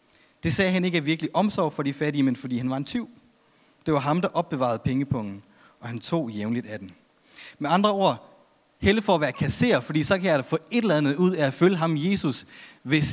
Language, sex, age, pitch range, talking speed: Danish, male, 30-49, 135-180 Hz, 240 wpm